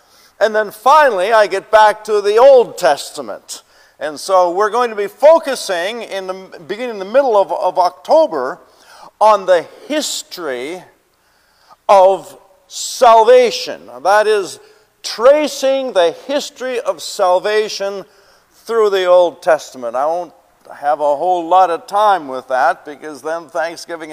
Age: 50-69